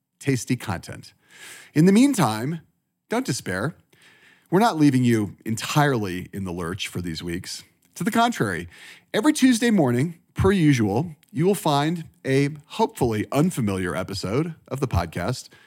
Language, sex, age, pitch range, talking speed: English, male, 40-59, 110-170 Hz, 140 wpm